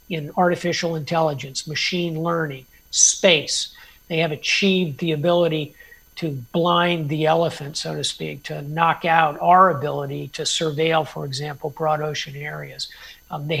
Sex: male